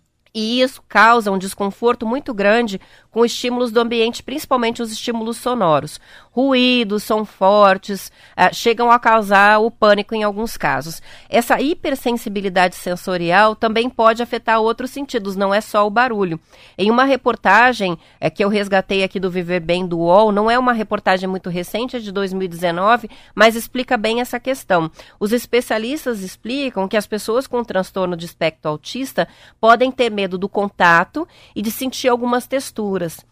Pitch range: 195-235 Hz